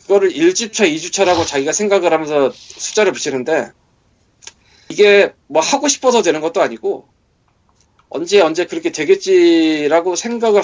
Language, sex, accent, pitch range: Korean, male, native, 155-230 Hz